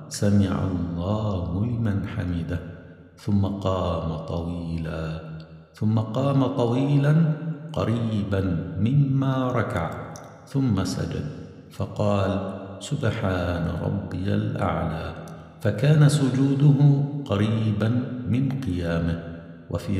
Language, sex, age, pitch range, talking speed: Arabic, male, 60-79, 90-130 Hz, 75 wpm